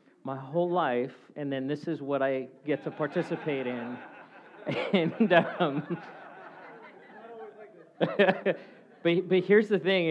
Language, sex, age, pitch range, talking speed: English, male, 40-59, 130-165 Hz, 120 wpm